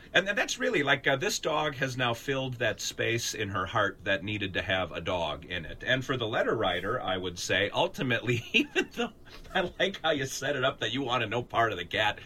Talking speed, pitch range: 245 wpm, 100-140 Hz